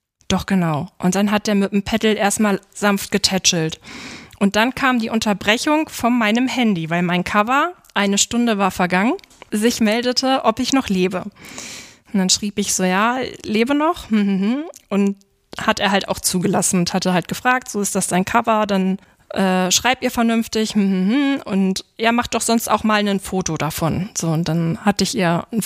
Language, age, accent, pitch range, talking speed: German, 20-39, German, 190-230 Hz, 185 wpm